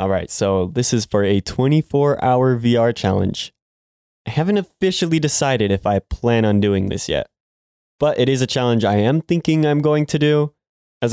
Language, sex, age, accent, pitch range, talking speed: English, male, 20-39, American, 100-125 Hz, 185 wpm